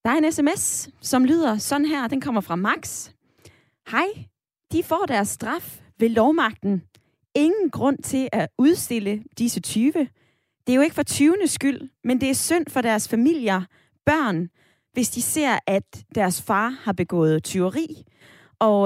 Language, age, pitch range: Danish, 20-39, 190-270 Hz